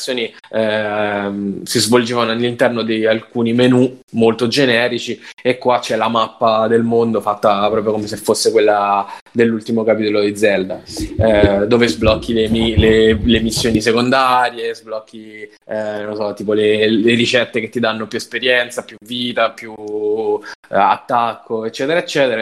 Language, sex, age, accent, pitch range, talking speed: Italian, male, 20-39, native, 110-125 Hz, 145 wpm